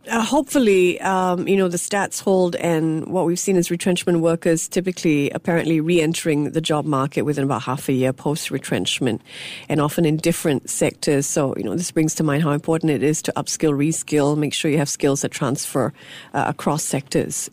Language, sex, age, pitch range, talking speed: English, female, 50-69, 170-265 Hz, 195 wpm